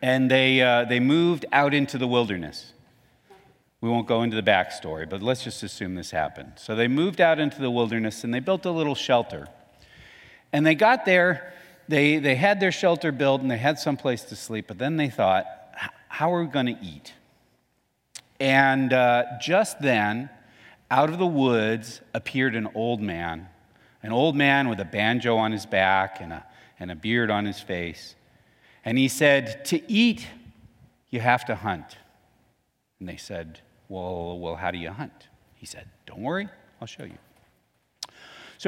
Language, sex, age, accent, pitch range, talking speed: English, male, 40-59, American, 100-140 Hz, 180 wpm